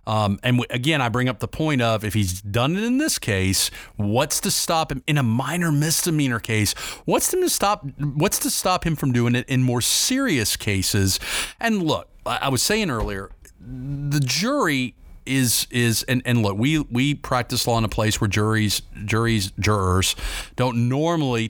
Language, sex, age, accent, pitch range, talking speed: English, male, 40-59, American, 105-145 Hz, 185 wpm